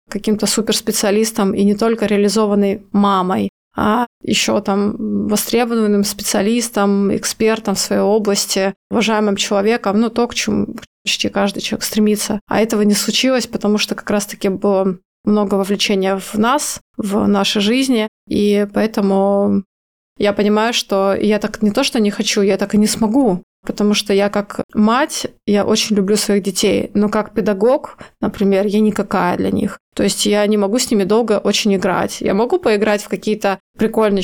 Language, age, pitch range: Russian, 20-39, 200-220 Hz